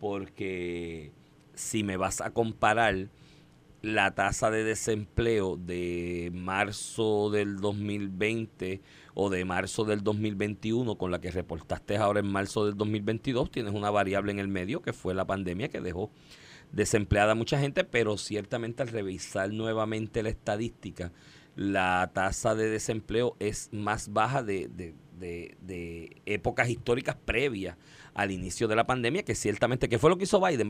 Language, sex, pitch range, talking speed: Spanish, male, 95-120 Hz, 150 wpm